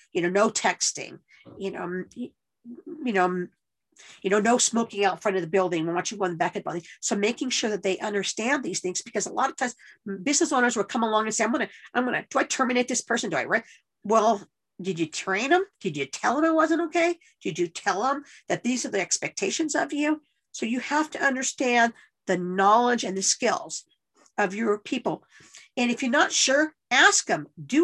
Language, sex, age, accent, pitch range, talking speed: English, female, 50-69, American, 190-275 Hz, 220 wpm